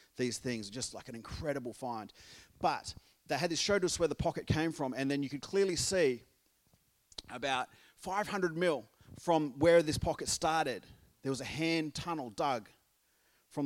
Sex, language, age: male, English, 30-49